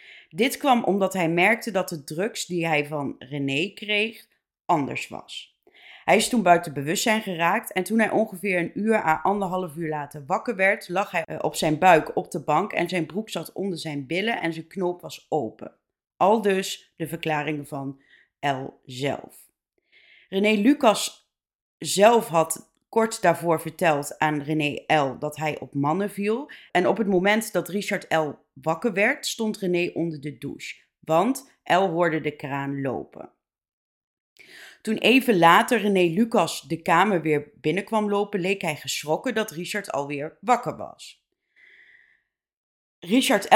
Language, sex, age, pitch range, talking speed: Dutch, female, 30-49, 155-205 Hz, 155 wpm